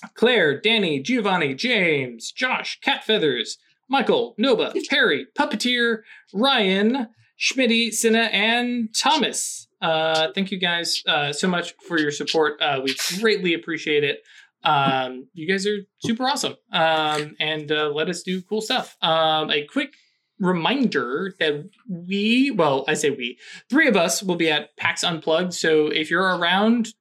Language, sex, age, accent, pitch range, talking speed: English, male, 20-39, American, 175-235 Hz, 145 wpm